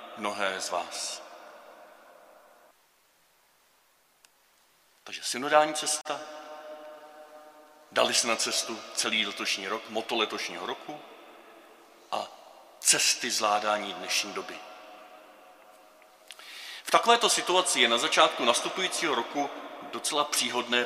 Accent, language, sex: native, Czech, male